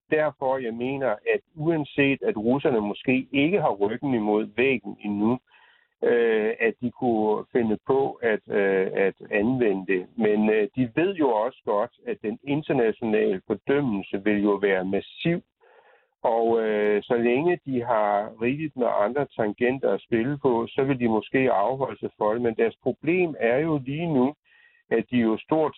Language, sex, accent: Danish, male, native